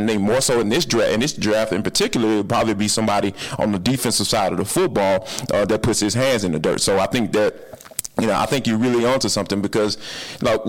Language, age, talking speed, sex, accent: English, 30-49, 260 wpm, male, American